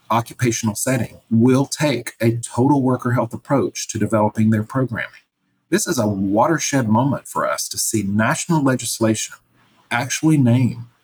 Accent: American